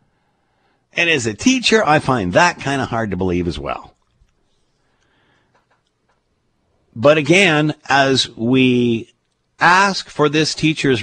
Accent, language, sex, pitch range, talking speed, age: American, English, male, 115-180 Hz, 120 wpm, 50-69